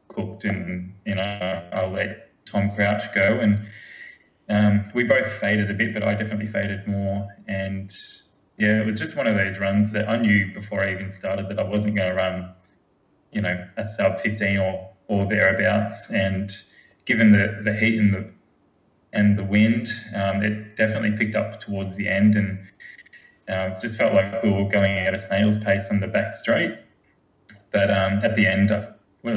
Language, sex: English, male